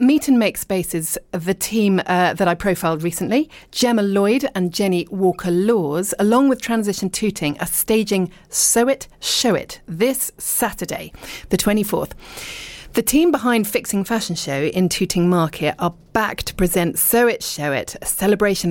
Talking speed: 160 wpm